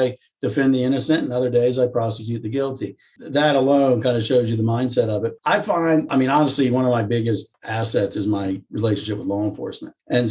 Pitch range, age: 110-135 Hz, 50-69